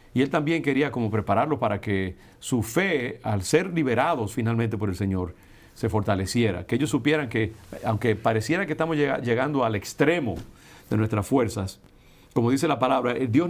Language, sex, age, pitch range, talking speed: English, male, 50-69, 100-125 Hz, 165 wpm